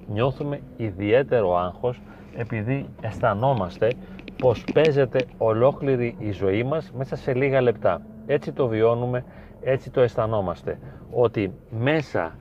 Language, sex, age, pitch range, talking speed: Greek, male, 30-49, 110-135 Hz, 110 wpm